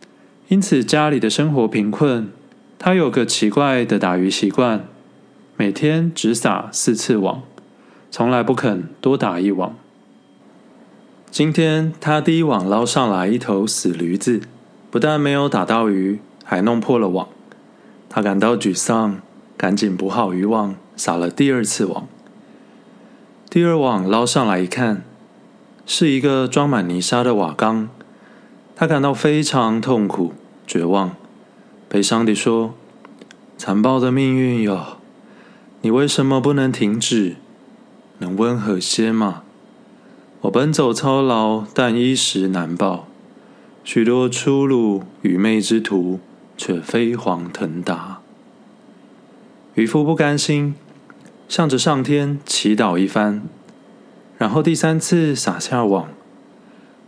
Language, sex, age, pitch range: Chinese, male, 20-39, 100-145 Hz